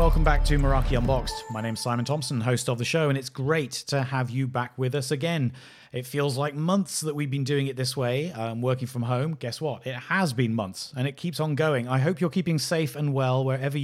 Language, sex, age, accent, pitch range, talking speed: English, male, 30-49, British, 125-145 Hz, 250 wpm